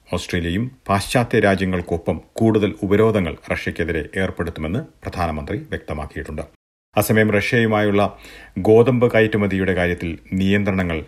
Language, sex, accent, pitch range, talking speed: Malayalam, male, native, 85-110 Hz, 80 wpm